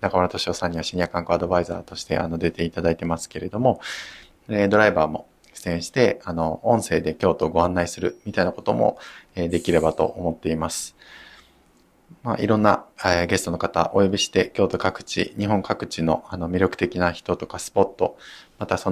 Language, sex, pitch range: Japanese, male, 85-100 Hz